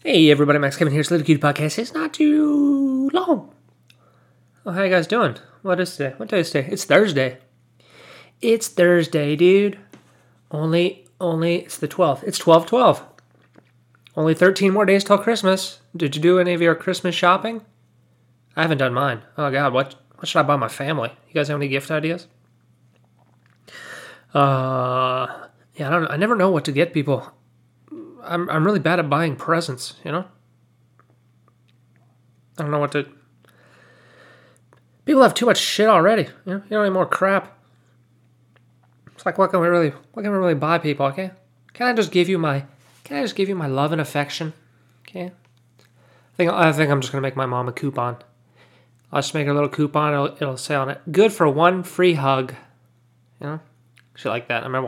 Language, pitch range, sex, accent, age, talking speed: English, 125-180 Hz, male, American, 20-39, 190 wpm